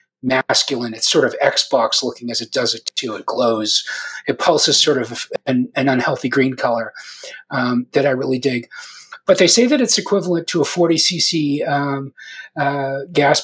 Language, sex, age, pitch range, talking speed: English, male, 40-59, 140-180 Hz, 180 wpm